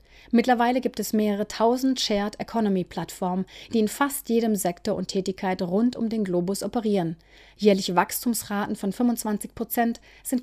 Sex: female